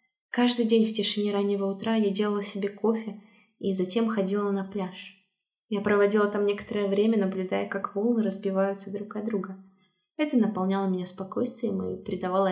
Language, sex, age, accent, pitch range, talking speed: Russian, female, 20-39, native, 200-230 Hz, 160 wpm